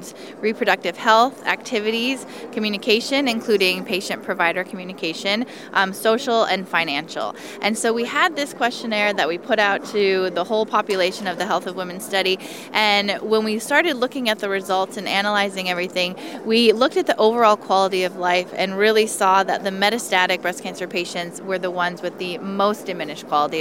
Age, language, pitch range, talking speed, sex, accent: 20-39, English, 185-230 Hz, 170 wpm, female, American